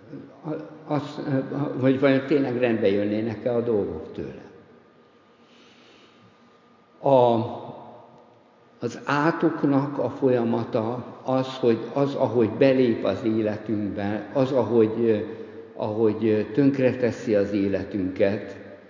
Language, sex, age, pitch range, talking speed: Hungarian, male, 60-79, 105-125 Hz, 90 wpm